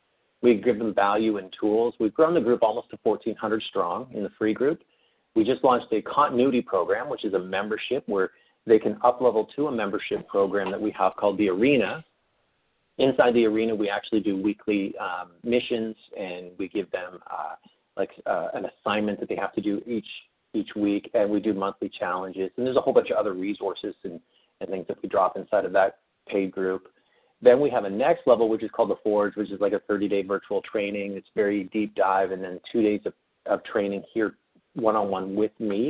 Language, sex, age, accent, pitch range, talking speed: English, male, 40-59, American, 100-120 Hz, 210 wpm